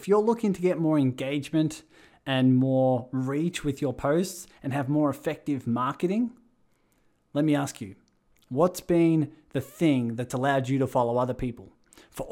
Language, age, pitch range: English, 20-39, 120-145 Hz